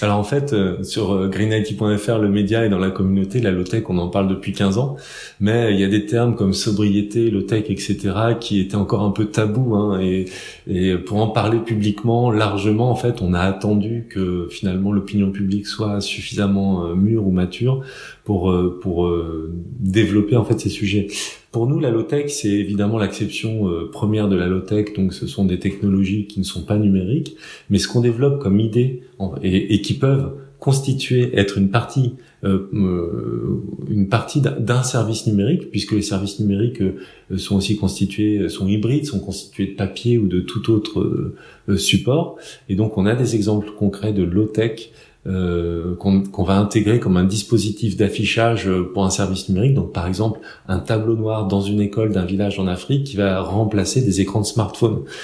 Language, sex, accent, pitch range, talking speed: French, male, French, 95-115 Hz, 185 wpm